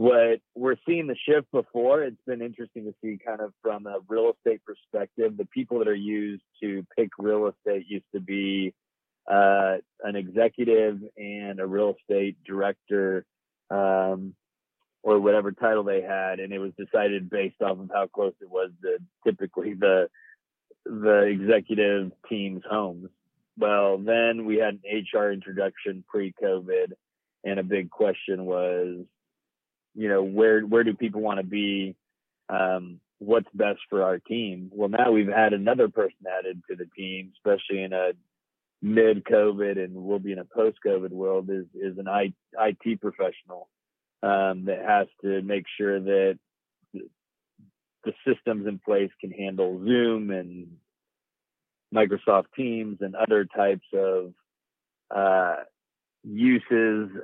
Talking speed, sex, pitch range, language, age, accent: 150 wpm, male, 95-110 Hz, English, 30-49, American